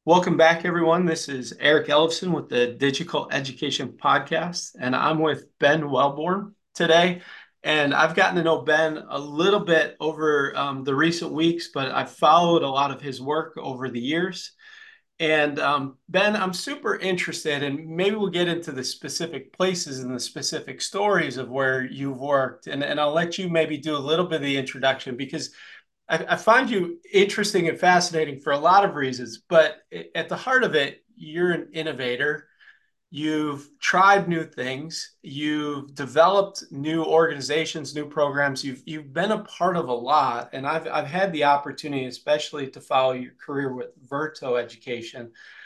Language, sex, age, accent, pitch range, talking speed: English, male, 40-59, American, 135-170 Hz, 170 wpm